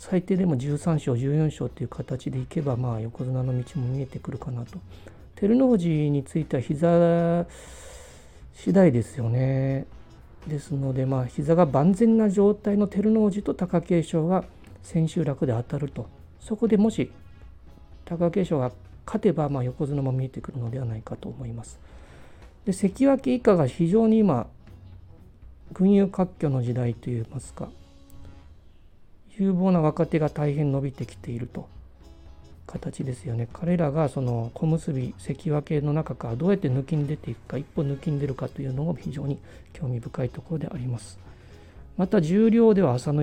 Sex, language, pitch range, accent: male, Japanese, 115-170 Hz, native